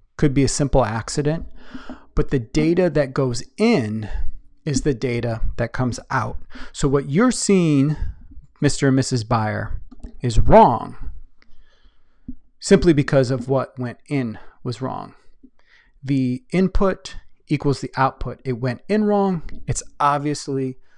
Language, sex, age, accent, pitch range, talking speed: English, male, 30-49, American, 120-150 Hz, 130 wpm